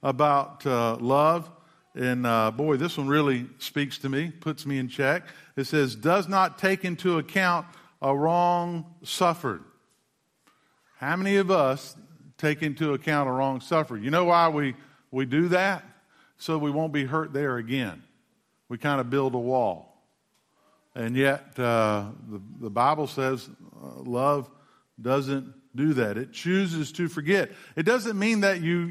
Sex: male